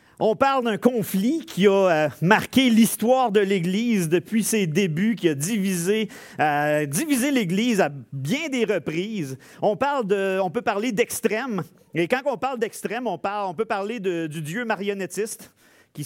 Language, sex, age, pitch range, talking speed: French, male, 40-59, 175-235 Hz, 170 wpm